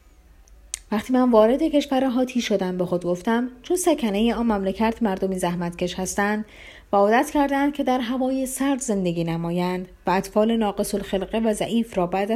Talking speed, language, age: 160 wpm, Persian, 30-49